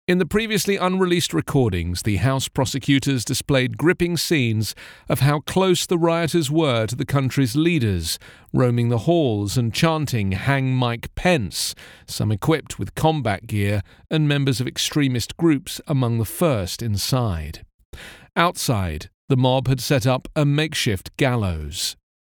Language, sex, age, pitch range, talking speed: English, male, 40-59, 110-155 Hz, 140 wpm